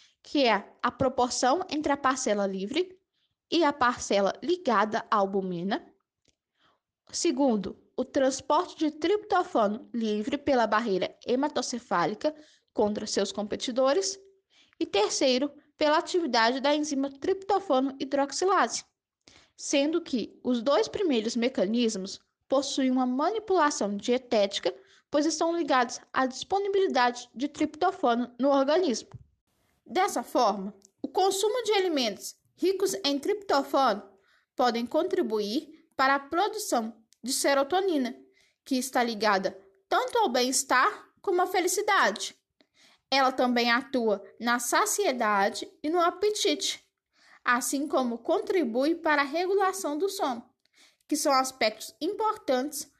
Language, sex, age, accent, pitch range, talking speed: Portuguese, female, 10-29, Brazilian, 245-340 Hz, 110 wpm